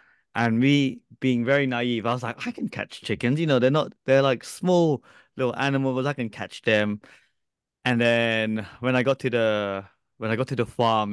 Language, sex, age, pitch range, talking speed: English, male, 20-39, 100-130 Hz, 205 wpm